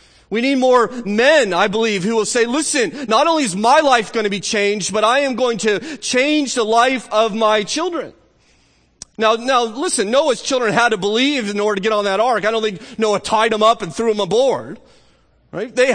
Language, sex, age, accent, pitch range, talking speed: English, male, 30-49, American, 165-245 Hz, 220 wpm